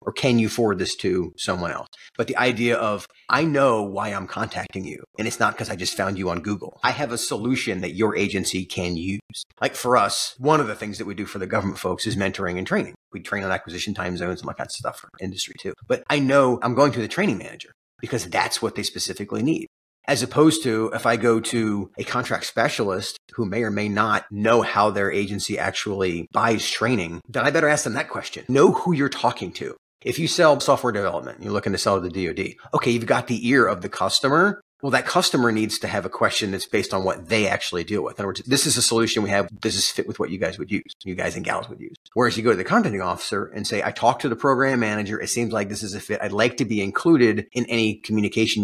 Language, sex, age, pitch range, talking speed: English, male, 30-49, 100-125 Hz, 255 wpm